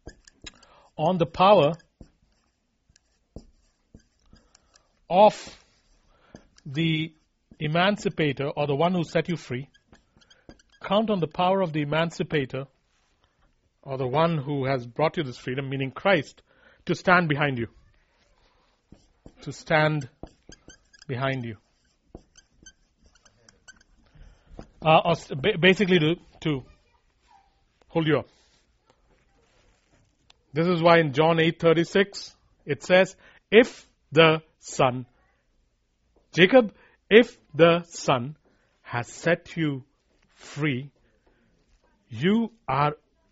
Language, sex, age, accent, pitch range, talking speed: English, male, 40-59, Indian, 135-180 Hz, 95 wpm